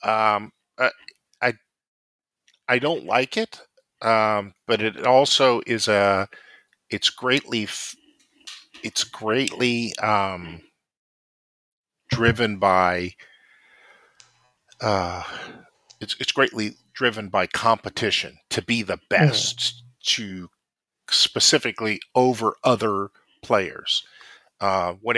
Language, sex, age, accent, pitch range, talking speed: English, male, 50-69, American, 100-125 Hz, 90 wpm